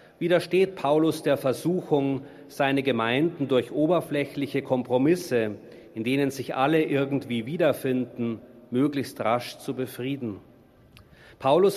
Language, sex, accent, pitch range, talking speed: German, male, German, 125-155 Hz, 100 wpm